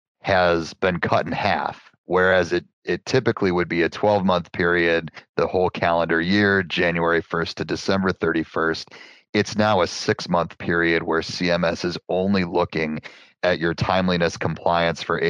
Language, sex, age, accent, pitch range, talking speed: English, male, 30-49, American, 85-95 Hz, 155 wpm